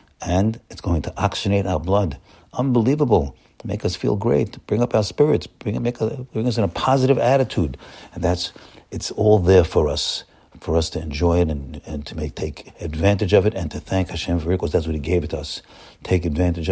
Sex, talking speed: male, 225 wpm